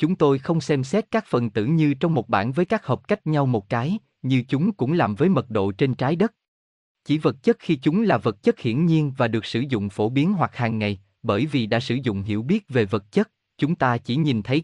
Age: 20-39